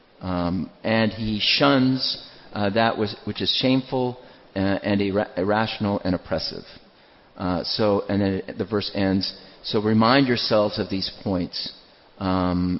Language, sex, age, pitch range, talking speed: English, male, 40-59, 95-110 Hz, 140 wpm